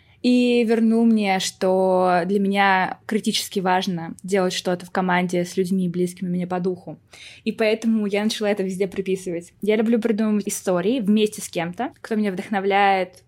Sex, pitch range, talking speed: female, 190-230 Hz, 160 wpm